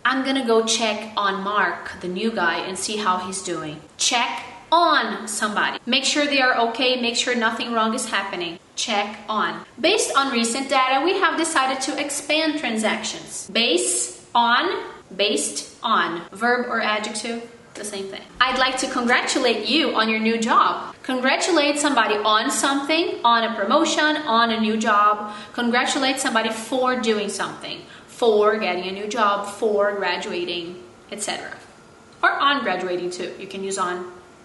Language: English